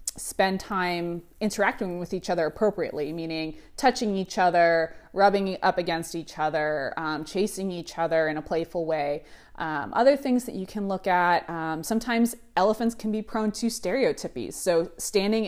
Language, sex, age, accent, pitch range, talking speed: English, female, 20-39, American, 170-220 Hz, 165 wpm